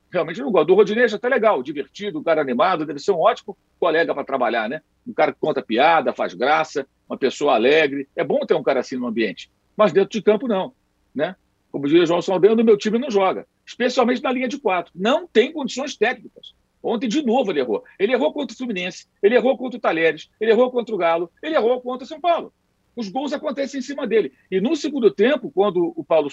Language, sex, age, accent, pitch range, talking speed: Portuguese, male, 50-69, Brazilian, 190-280 Hz, 235 wpm